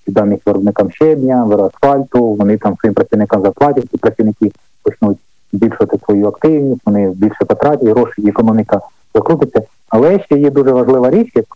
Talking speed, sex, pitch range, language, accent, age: 155 wpm, male, 100-125 Hz, Ukrainian, native, 30-49